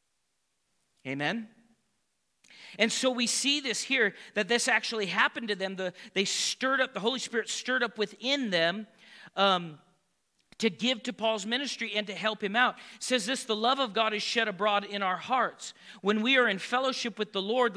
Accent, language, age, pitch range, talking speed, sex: American, English, 40-59, 195-245 Hz, 190 wpm, male